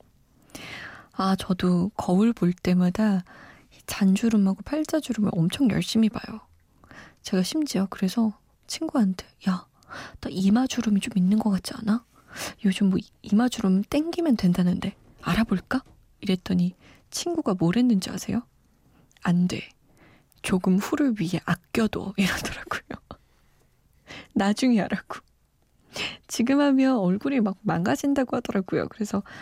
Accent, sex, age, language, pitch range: native, female, 20-39, Korean, 190-235 Hz